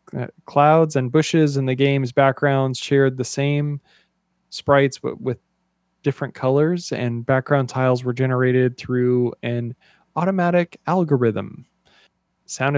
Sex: male